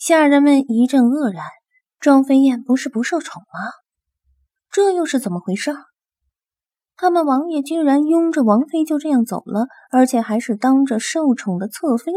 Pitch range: 220-300 Hz